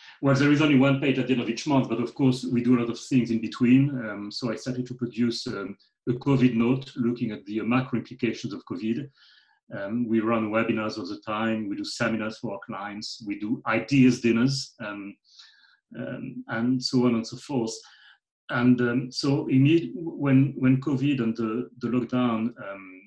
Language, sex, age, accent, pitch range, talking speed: English, male, 40-59, French, 115-130 Hz, 205 wpm